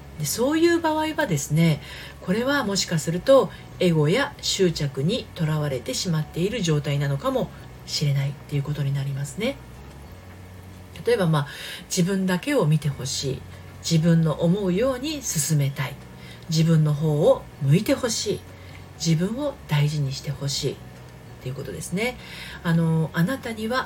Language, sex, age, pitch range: Japanese, female, 40-59, 145-205 Hz